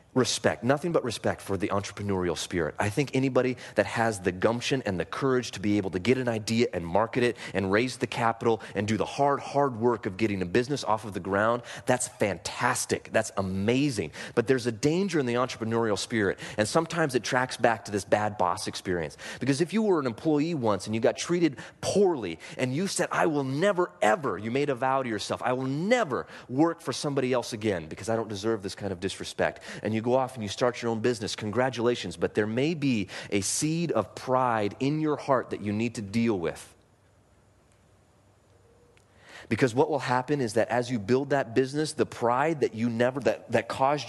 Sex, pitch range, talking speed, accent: male, 105-140 Hz, 210 wpm, American